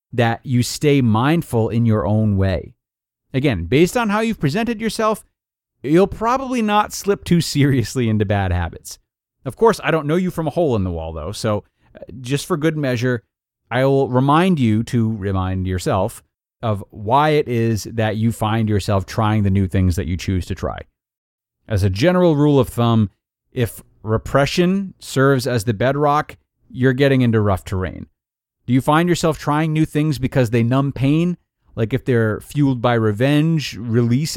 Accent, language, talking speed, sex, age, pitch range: American, English, 175 wpm, male, 30-49, 105-145 Hz